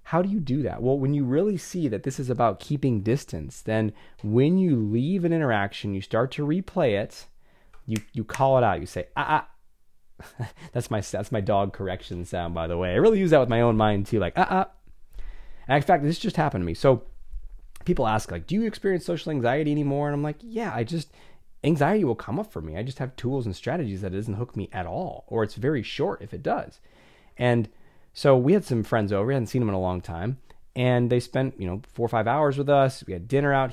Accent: American